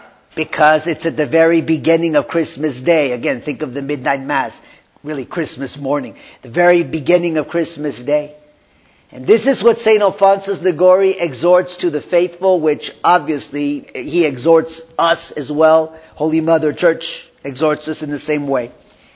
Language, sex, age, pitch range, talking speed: English, male, 50-69, 150-210 Hz, 160 wpm